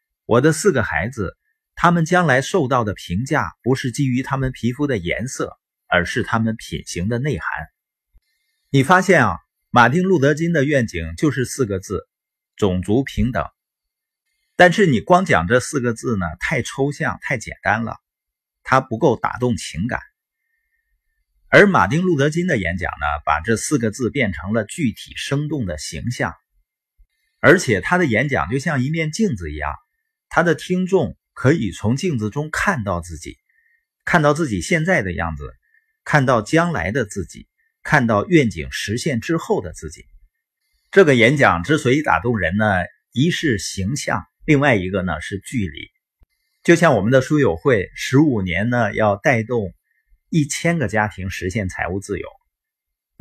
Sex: male